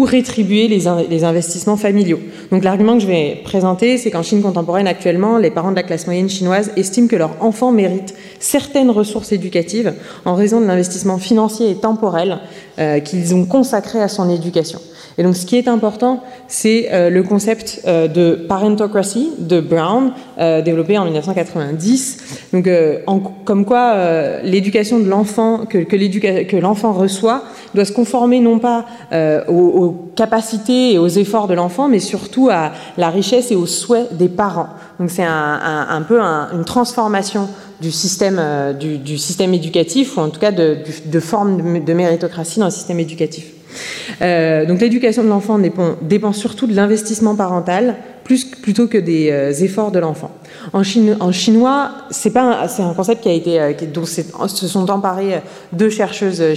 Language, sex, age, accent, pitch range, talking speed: French, female, 30-49, French, 170-225 Hz, 170 wpm